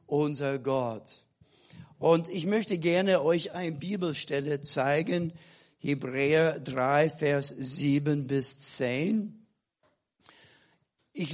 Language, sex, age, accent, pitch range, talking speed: German, male, 60-79, German, 135-165 Hz, 90 wpm